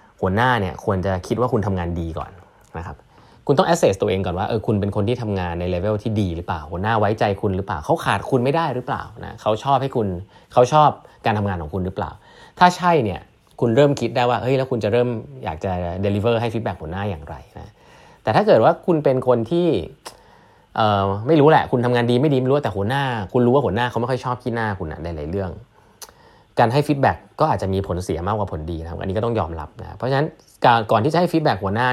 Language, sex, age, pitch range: Thai, male, 20-39, 95-120 Hz